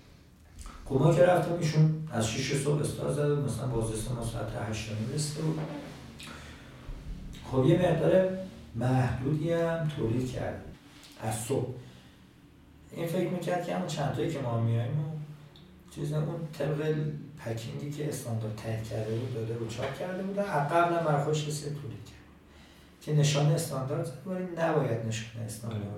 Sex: male